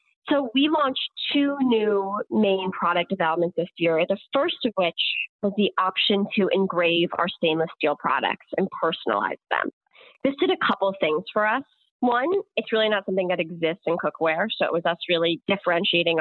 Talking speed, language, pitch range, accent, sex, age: 180 wpm, English, 170-215 Hz, American, female, 30-49